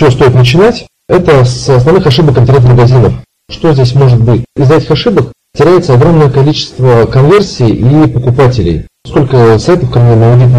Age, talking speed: 40-59, 145 wpm